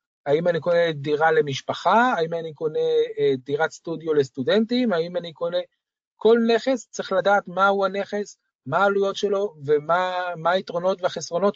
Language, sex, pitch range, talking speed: Hebrew, male, 150-220 Hz, 135 wpm